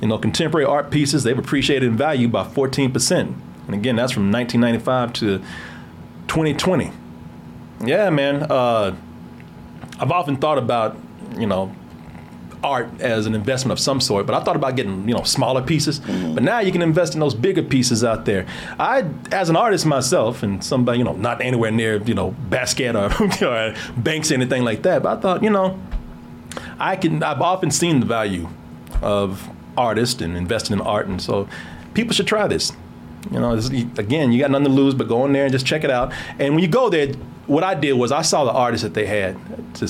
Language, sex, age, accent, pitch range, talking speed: English, male, 30-49, American, 100-145 Hz, 200 wpm